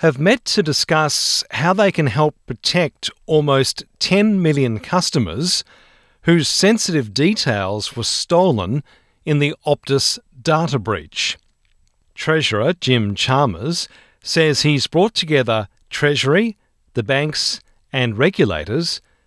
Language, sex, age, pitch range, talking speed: English, male, 40-59, 120-165 Hz, 110 wpm